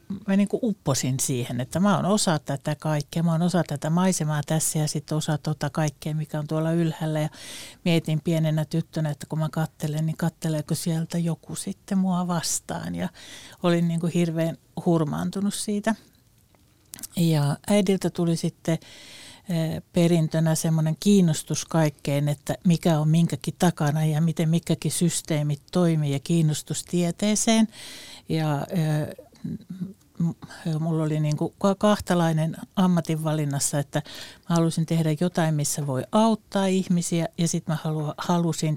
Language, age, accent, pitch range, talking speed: Finnish, 60-79, native, 155-175 Hz, 130 wpm